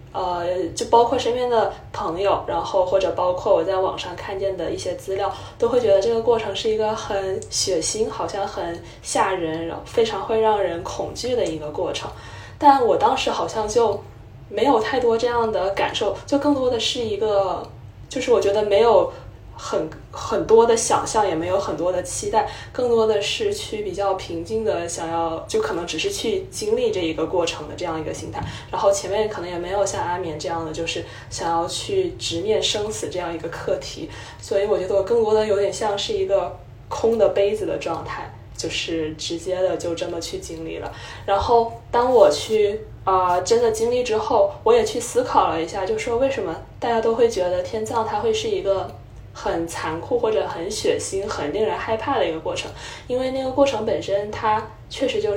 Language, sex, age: Chinese, female, 20-39